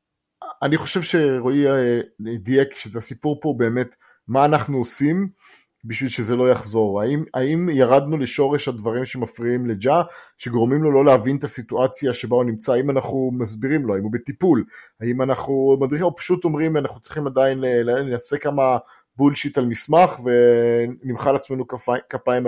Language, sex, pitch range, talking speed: English, male, 120-150 Hz, 140 wpm